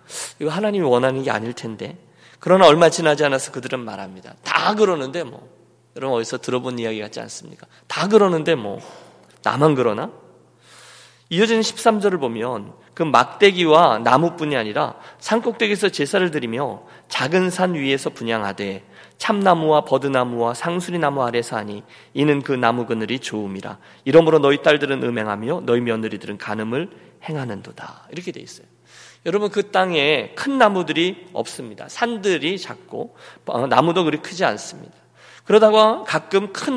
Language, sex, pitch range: Korean, male, 120-180 Hz